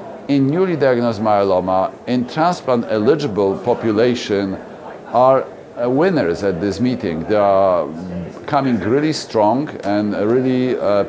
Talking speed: 115 wpm